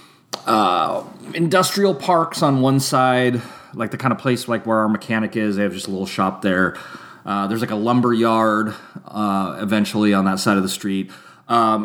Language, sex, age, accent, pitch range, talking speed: English, male, 30-49, American, 100-145 Hz, 190 wpm